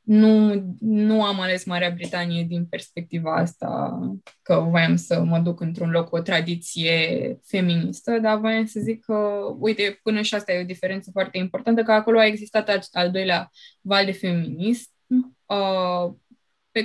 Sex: female